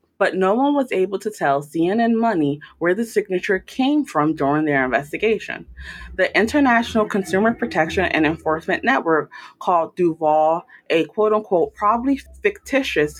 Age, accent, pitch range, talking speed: 20-39, American, 155-230 Hz, 135 wpm